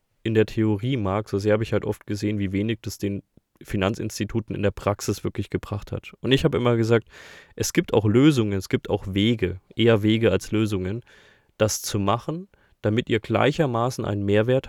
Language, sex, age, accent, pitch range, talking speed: German, male, 20-39, German, 100-120 Hz, 190 wpm